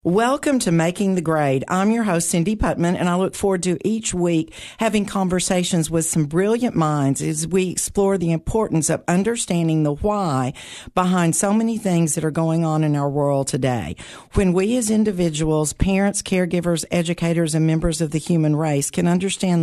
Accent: American